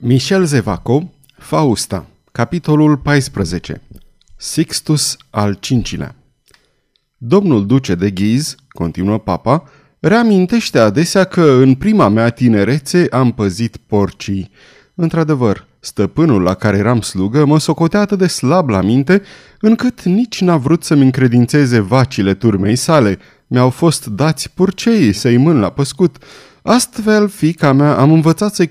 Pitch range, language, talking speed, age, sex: 110-170 Hz, Romanian, 125 wpm, 30-49, male